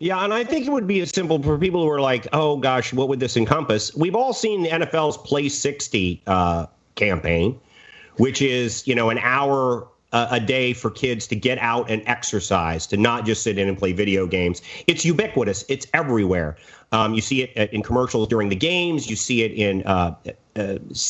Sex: male